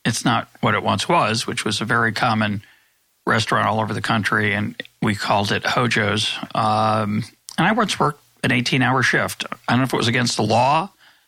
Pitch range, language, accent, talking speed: 110-130 Hz, English, American, 200 wpm